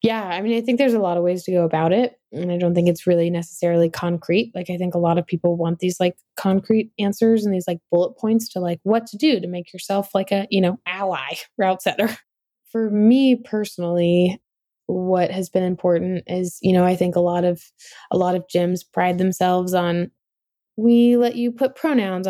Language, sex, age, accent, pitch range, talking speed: English, female, 20-39, American, 180-225 Hz, 220 wpm